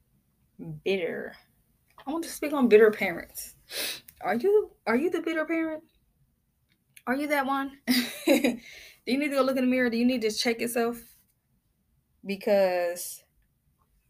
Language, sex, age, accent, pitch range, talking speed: English, female, 10-29, American, 190-255 Hz, 150 wpm